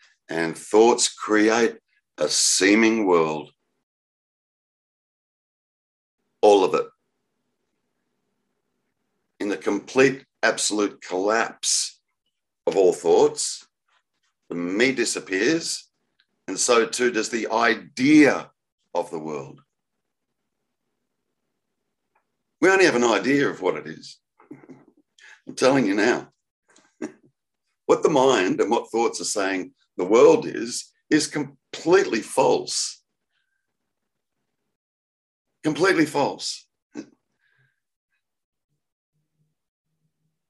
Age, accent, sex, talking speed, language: 50-69, Australian, male, 85 wpm, English